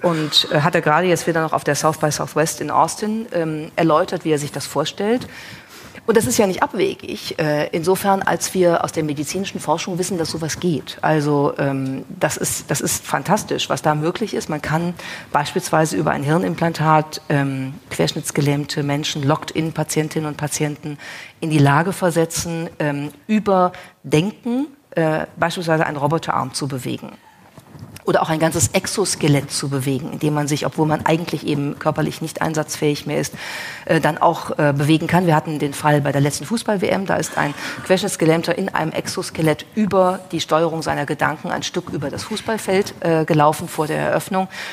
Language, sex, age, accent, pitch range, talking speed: German, female, 40-59, German, 150-180 Hz, 175 wpm